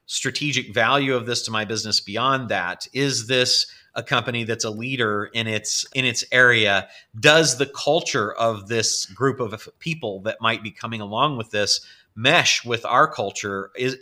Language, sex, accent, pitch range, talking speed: English, male, American, 110-130 Hz, 175 wpm